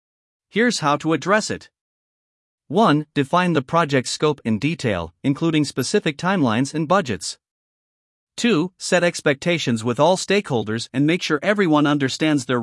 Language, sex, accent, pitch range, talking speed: English, male, American, 130-180 Hz, 140 wpm